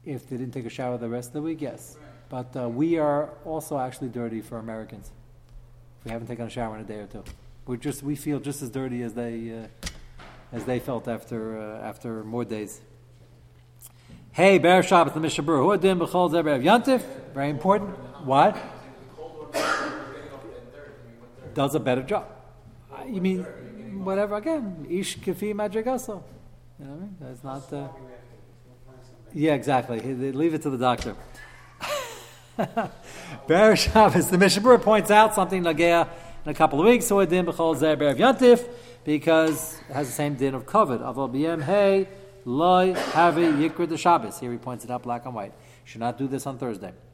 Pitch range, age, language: 120-175 Hz, 40-59, English